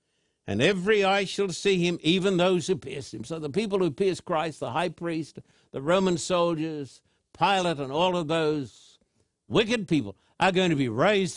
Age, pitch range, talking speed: 60-79, 150-200 Hz, 185 wpm